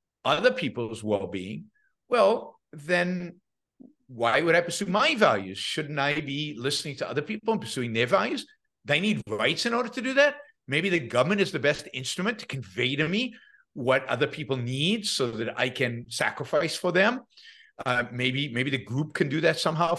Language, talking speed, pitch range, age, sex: English, 185 wpm, 130-210 Hz, 50-69, male